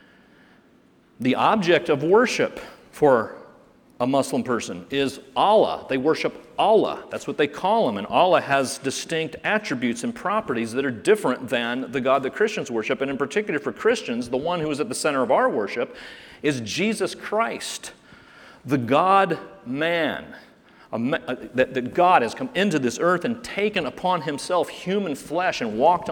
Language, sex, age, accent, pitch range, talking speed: English, male, 40-59, American, 150-225 Hz, 160 wpm